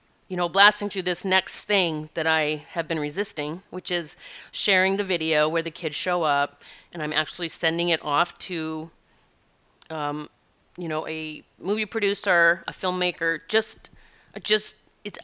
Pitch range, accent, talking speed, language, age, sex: 160-205 Hz, American, 155 wpm, English, 30-49, female